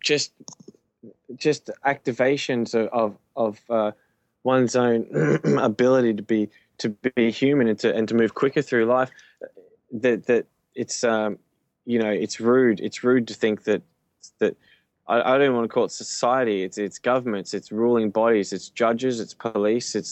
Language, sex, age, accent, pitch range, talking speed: English, male, 10-29, Australian, 105-125 Hz, 165 wpm